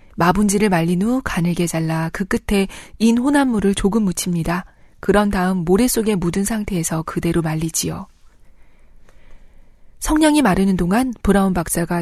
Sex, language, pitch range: female, Korean, 175-230 Hz